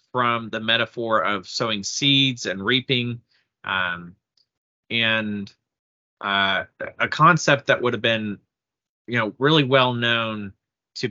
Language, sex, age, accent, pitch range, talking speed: English, male, 30-49, American, 105-130 Hz, 125 wpm